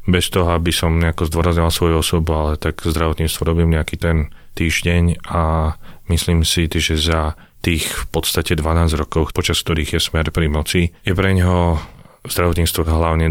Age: 30-49